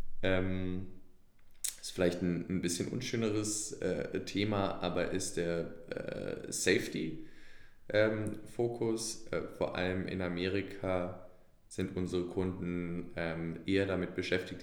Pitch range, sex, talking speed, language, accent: 85-95 Hz, male, 105 wpm, German, German